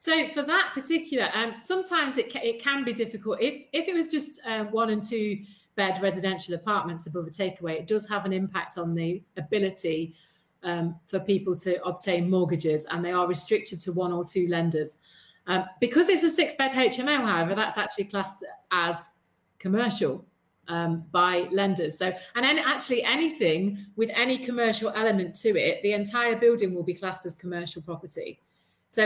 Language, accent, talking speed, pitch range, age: English, British, 180 wpm, 175-225 Hz, 30-49